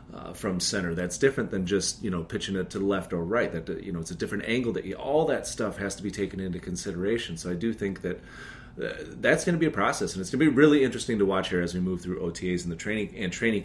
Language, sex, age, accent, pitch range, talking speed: English, male, 30-49, American, 85-105 Hz, 290 wpm